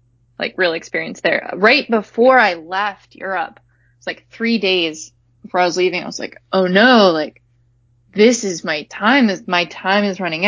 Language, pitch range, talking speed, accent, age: English, 165-215 Hz, 185 wpm, American, 20-39